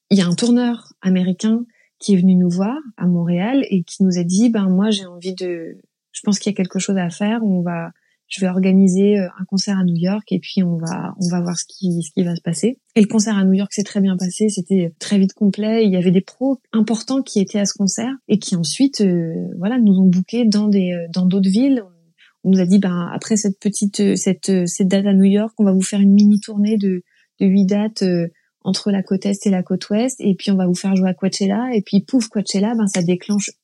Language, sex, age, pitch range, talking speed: French, female, 20-39, 185-215 Hz, 260 wpm